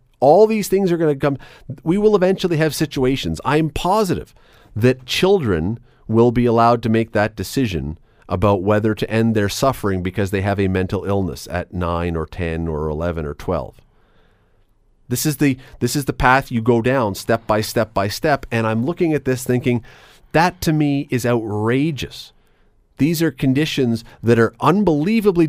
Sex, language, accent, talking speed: male, English, American, 175 wpm